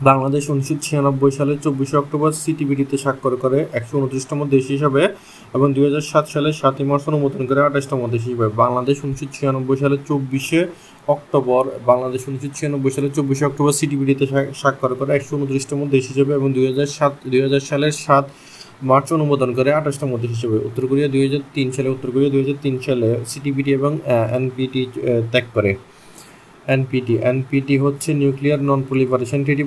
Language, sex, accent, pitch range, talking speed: Bengali, male, native, 130-145 Hz, 135 wpm